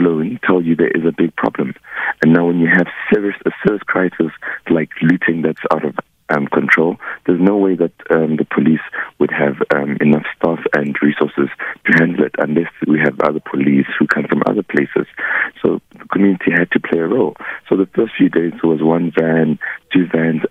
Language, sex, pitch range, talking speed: English, male, 80-95 Hz, 205 wpm